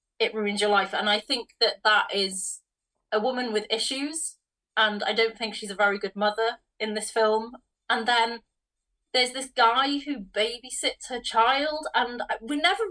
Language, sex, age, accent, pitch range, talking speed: English, female, 30-49, British, 205-235 Hz, 175 wpm